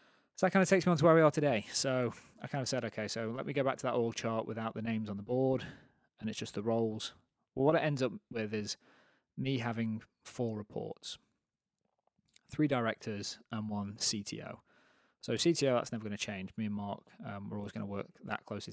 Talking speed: 230 wpm